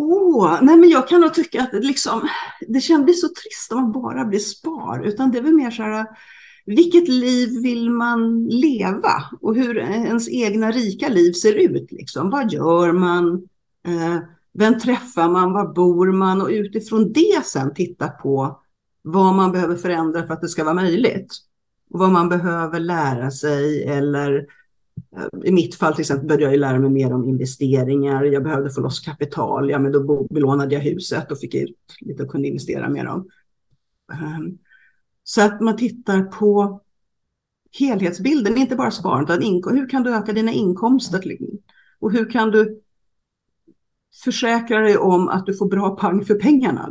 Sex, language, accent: female, Swedish, native